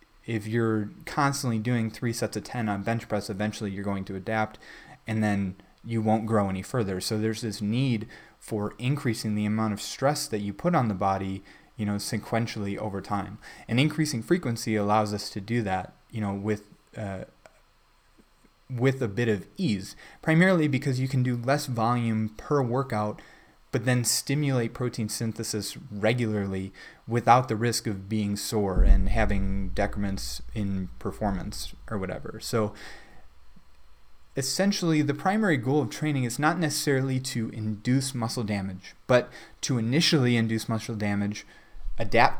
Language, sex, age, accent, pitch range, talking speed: English, male, 20-39, American, 100-125 Hz, 155 wpm